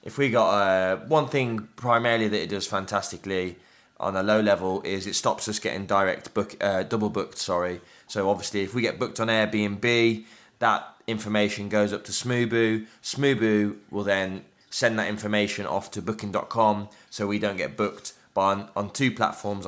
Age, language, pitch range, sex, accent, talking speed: 20-39, English, 90-105 Hz, male, British, 180 wpm